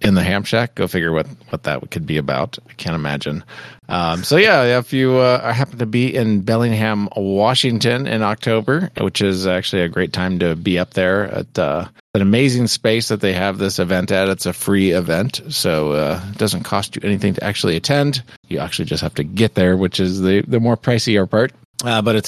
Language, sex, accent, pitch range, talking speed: English, male, American, 90-120 Hz, 215 wpm